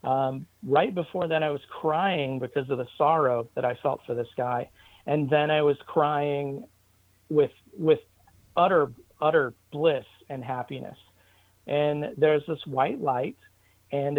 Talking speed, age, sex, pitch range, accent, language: 150 wpm, 40-59, male, 120-150 Hz, American, English